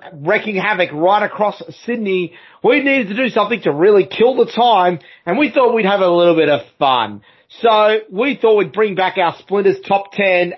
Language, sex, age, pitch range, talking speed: English, male, 30-49, 180-225 Hz, 200 wpm